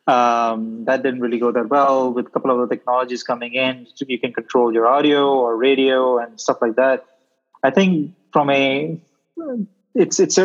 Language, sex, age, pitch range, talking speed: English, male, 20-39, 130-150 Hz, 180 wpm